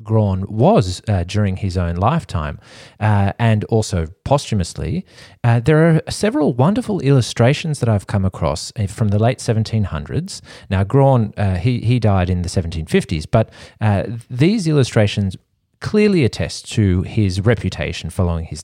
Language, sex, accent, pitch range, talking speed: English, male, Australian, 95-125 Hz, 145 wpm